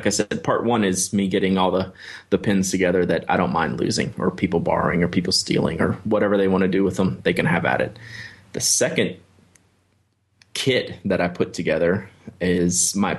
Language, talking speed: English, 210 wpm